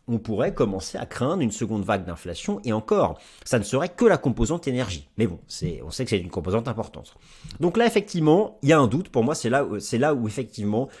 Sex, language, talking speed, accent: male, French, 245 wpm, French